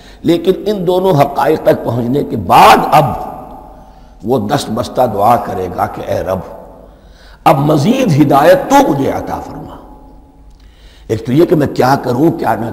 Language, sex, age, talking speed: Urdu, male, 60-79, 160 wpm